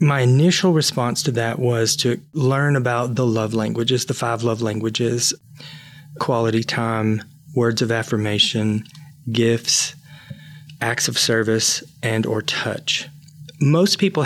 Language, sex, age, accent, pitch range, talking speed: English, male, 30-49, American, 115-150 Hz, 125 wpm